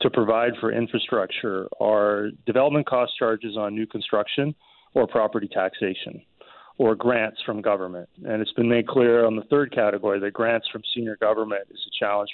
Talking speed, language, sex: 170 wpm, English, male